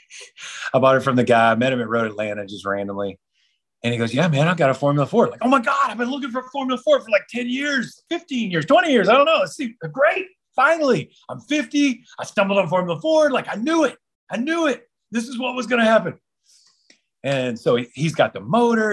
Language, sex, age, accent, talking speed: English, male, 30-49, American, 245 wpm